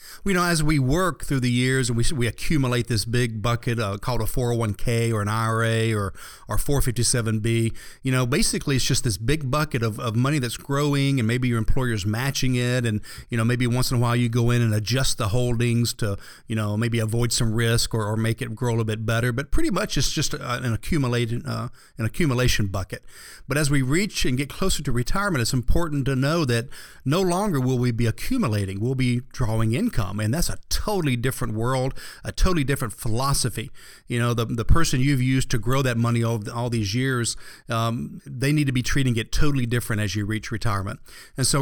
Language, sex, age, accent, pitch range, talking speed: English, male, 40-59, American, 115-135 Hz, 220 wpm